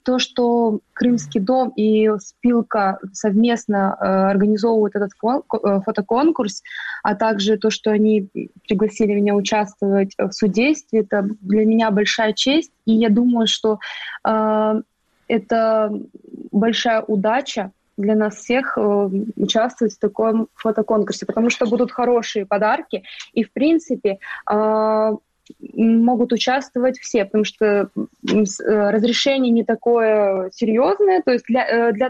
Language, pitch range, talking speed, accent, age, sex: Russian, 215-245 Hz, 120 wpm, native, 20-39, female